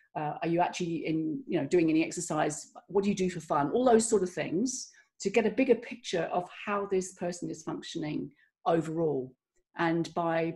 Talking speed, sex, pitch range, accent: 200 wpm, female, 170-215 Hz, British